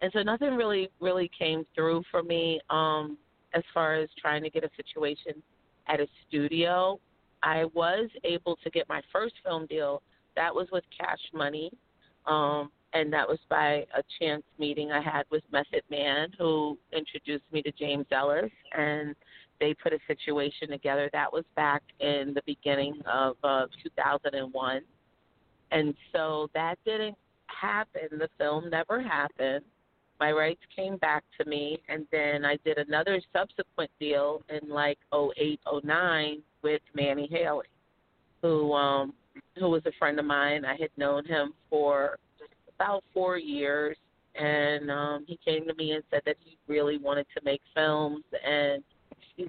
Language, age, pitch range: English, 40-59, 145-160 Hz